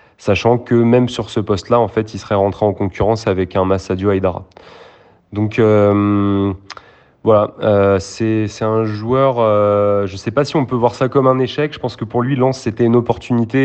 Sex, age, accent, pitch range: male, 30-49, French, 100-120 Hz